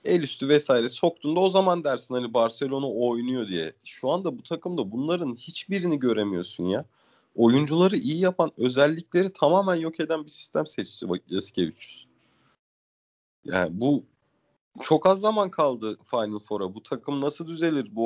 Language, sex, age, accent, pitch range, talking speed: Turkish, male, 40-59, native, 125-160 Hz, 145 wpm